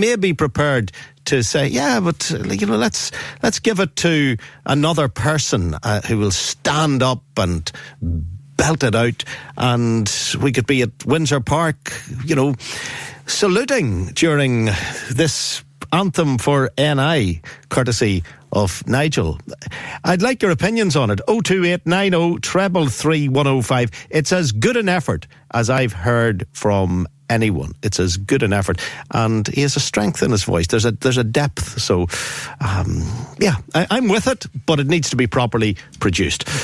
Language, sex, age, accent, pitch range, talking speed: English, male, 50-69, Irish, 115-165 Hz, 165 wpm